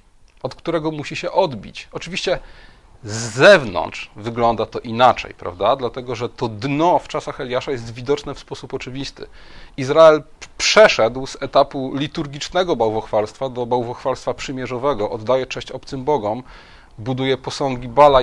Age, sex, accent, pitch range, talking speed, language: 30-49, male, native, 115-155 Hz, 130 wpm, Polish